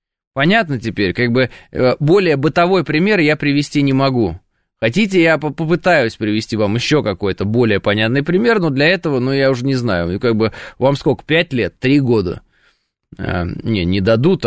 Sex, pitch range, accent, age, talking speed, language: male, 115-155 Hz, native, 20-39, 165 wpm, Russian